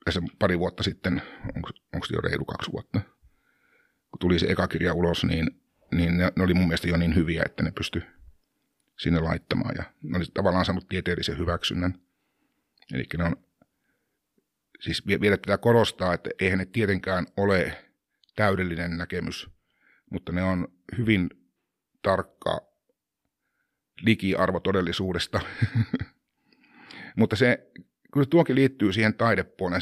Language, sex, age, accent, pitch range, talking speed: Finnish, male, 60-79, native, 90-115 Hz, 130 wpm